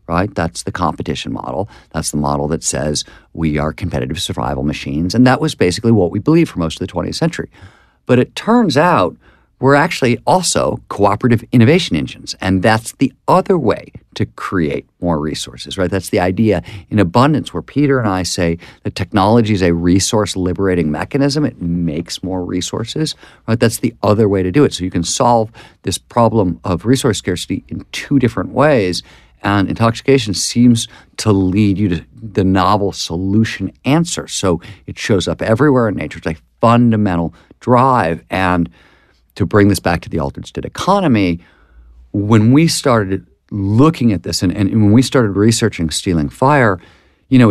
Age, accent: 50-69, American